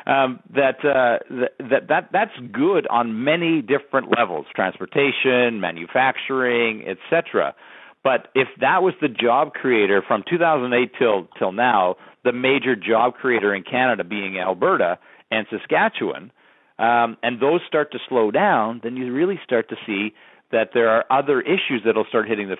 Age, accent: 50-69, American